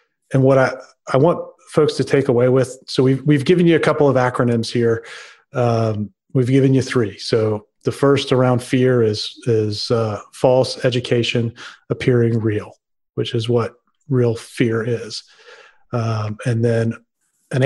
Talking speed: 160 wpm